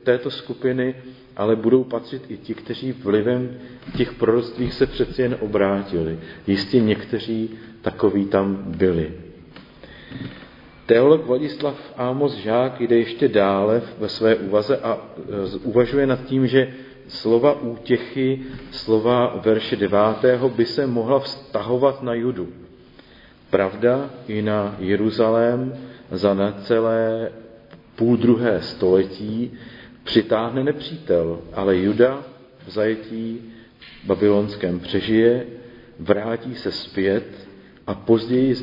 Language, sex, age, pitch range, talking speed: Czech, male, 40-59, 100-125 Hz, 110 wpm